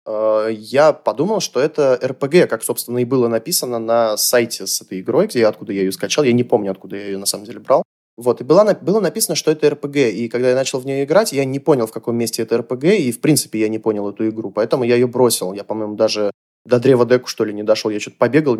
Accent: native